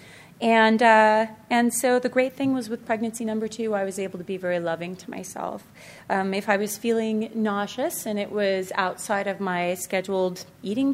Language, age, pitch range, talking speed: English, 30-49, 190-245 Hz, 190 wpm